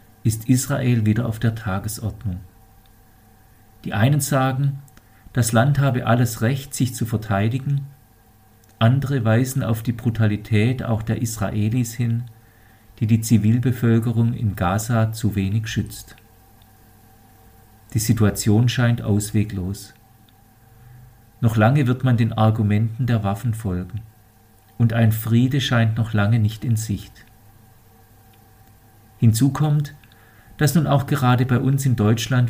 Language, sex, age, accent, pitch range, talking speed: German, male, 50-69, German, 110-120 Hz, 120 wpm